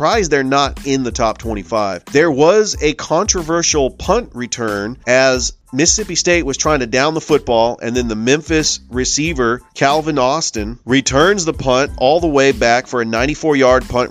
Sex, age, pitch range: male, 40-59, 125-155 Hz